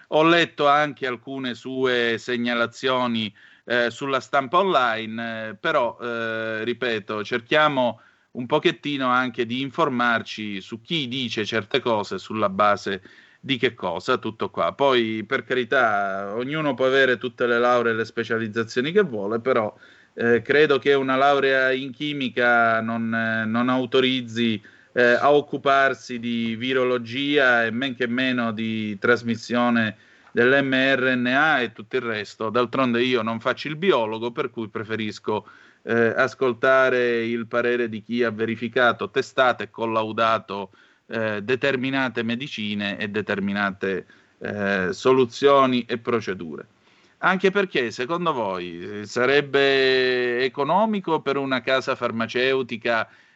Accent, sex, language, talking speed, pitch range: native, male, Italian, 125 wpm, 115-130 Hz